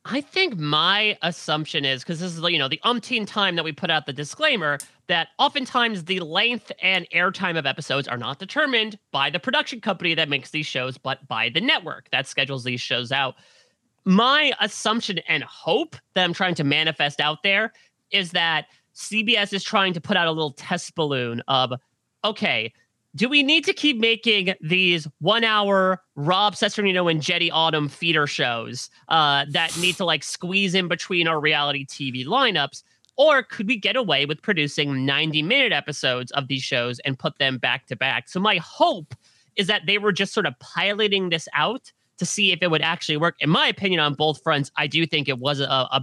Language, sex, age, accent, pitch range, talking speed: English, male, 30-49, American, 140-200 Hz, 200 wpm